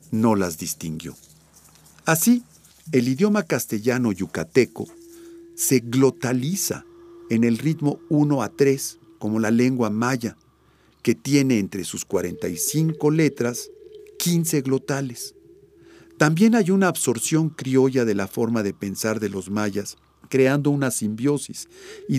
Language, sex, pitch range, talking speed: Spanish, male, 115-165 Hz, 120 wpm